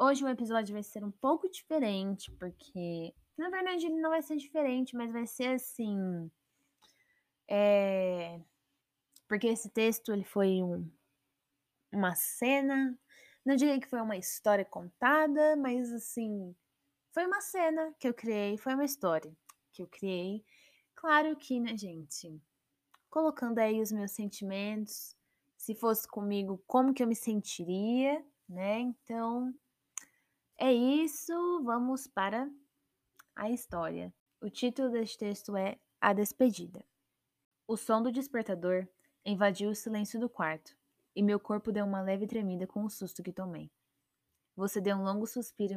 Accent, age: Brazilian, 10-29